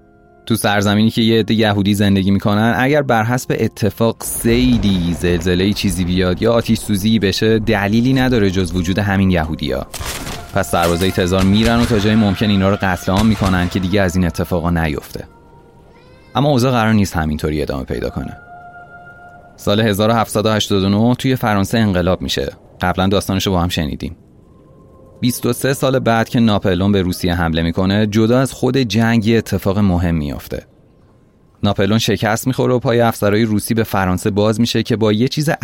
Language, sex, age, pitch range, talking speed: Persian, male, 30-49, 95-115 Hz, 165 wpm